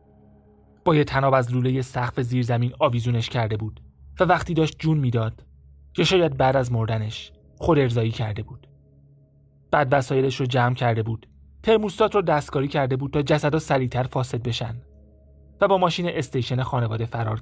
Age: 30-49